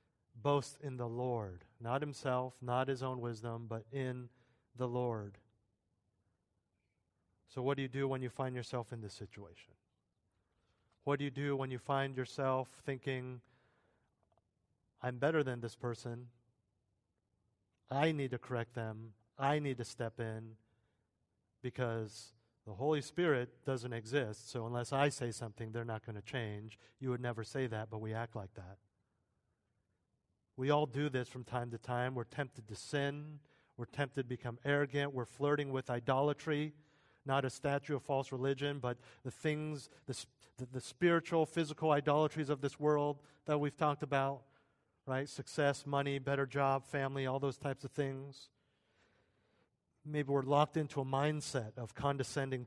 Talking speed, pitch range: 155 wpm, 115-140 Hz